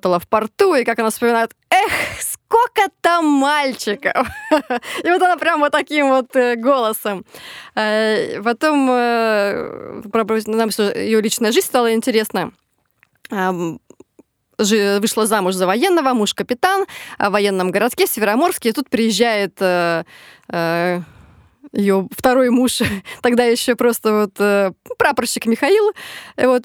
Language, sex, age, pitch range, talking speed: Russian, female, 20-39, 210-290 Hz, 105 wpm